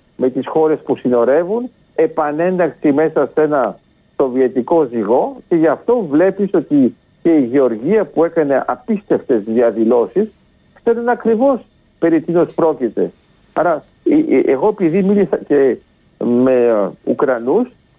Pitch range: 145-225 Hz